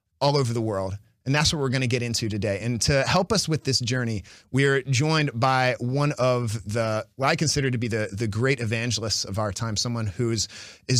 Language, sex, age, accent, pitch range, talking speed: English, male, 30-49, American, 110-145 Hz, 230 wpm